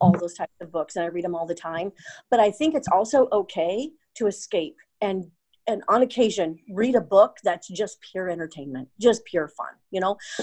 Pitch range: 170-210 Hz